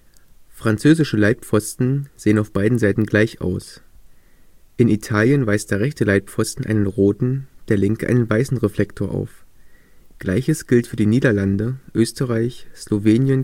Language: English